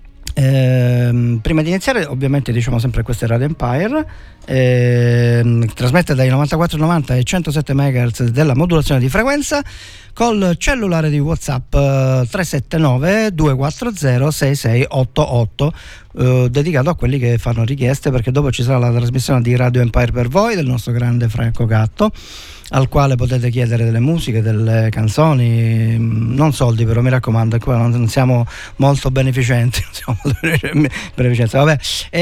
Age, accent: 40-59, native